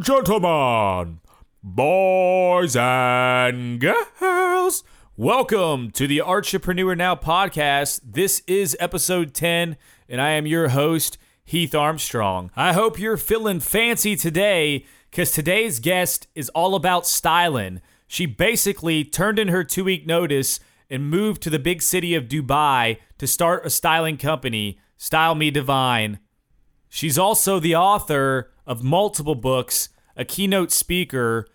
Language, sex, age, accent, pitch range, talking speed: English, male, 30-49, American, 135-185 Hz, 125 wpm